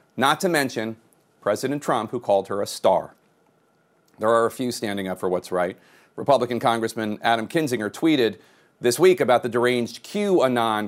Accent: American